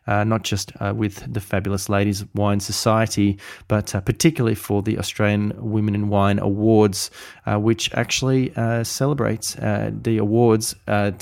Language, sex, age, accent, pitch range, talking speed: English, male, 20-39, Australian, 100-110 Hz, 155 wpm